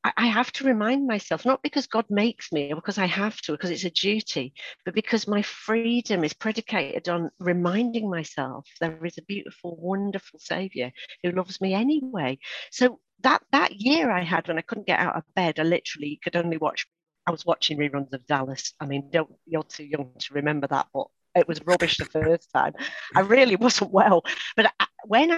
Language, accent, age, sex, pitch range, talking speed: English, British, 50-69, female, 160-225 Hz, 200 wpm